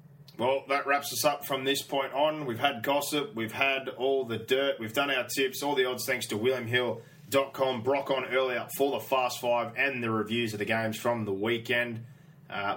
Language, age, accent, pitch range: English, 20-39, Australian, 115-140 Hz